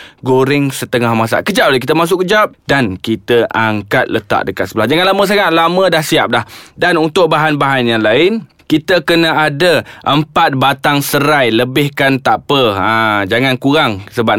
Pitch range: 125-150 Hz